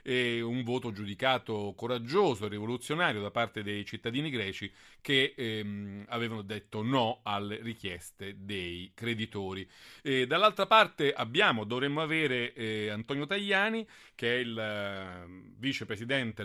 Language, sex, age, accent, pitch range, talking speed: Italian, male, 40-59, native, 105-135 Hz, 130 wpm